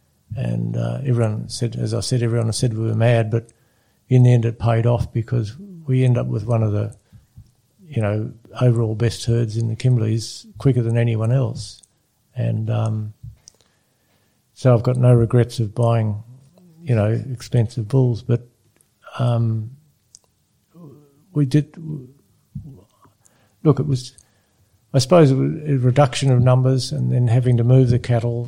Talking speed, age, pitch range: 155 wpm, 60-79, 115-130 Hz